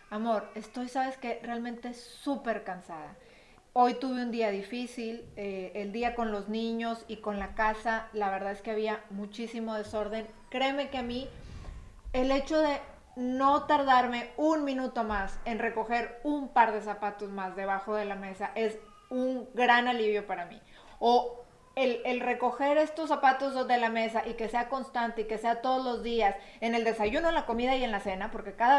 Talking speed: 185 wpm